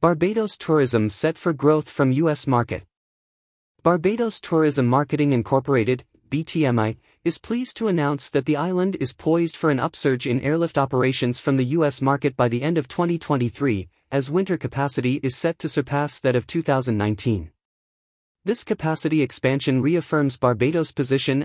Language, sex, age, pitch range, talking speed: English, male, 30-49, 125-165 Hz, 150 wpm